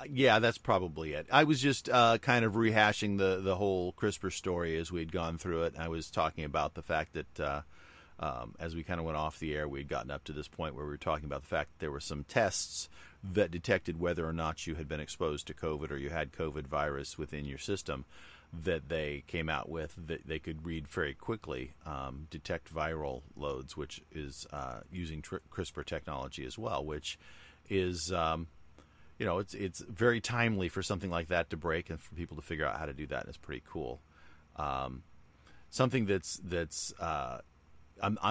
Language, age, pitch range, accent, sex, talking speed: English, 40-59, 75-95 Hz, American, male, 205 wpm